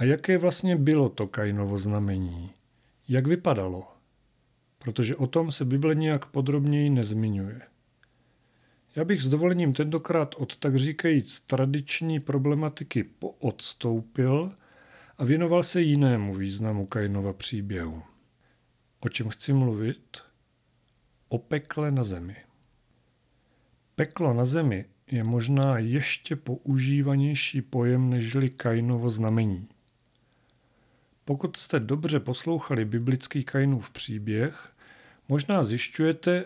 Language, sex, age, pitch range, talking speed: Czech, male, 40-59, 115-145 Hz, 105 wpm